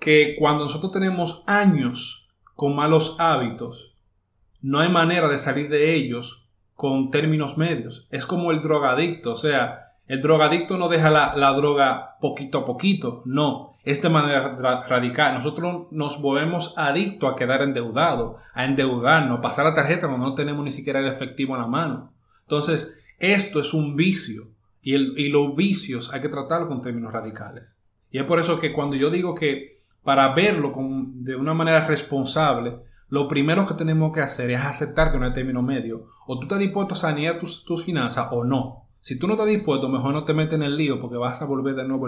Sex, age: male, 30-49